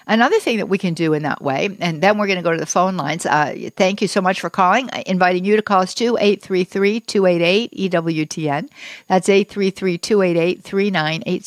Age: 60-79